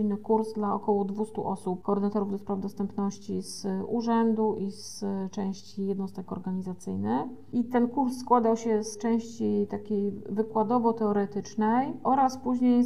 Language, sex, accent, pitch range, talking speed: Polish, female, native, 190-215 Hz, 120 wpm